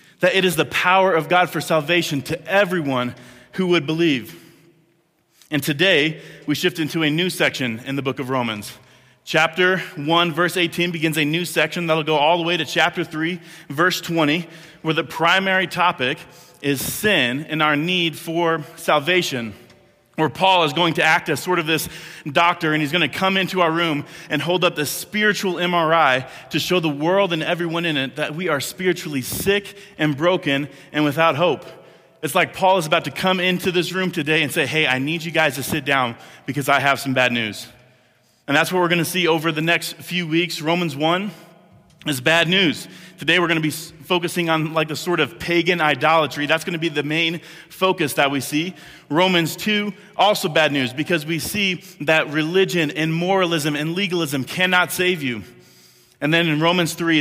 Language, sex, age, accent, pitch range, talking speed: English, male, 30-49, American, 150-175 Hz, 200 wpm